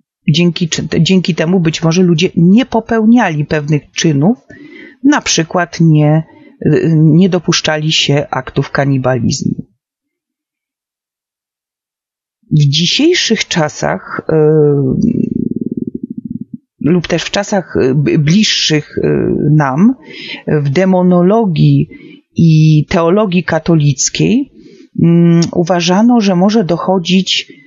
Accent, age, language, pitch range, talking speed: native, 40-59, Polish, 155-225 Hz, 80 wpm